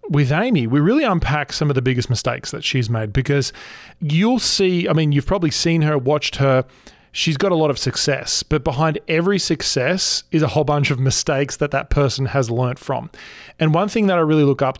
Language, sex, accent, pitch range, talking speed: English, male, Australian, 130-160 Hz, 220 wpm